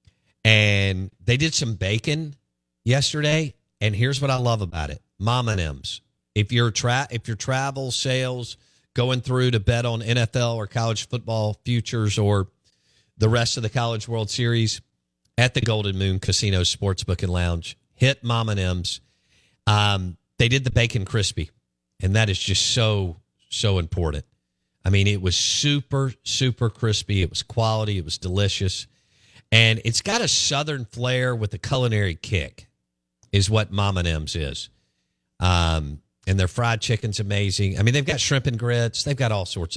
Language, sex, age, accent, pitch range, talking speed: English, male, 50-69, American, 95-120 Hz, 165 wpm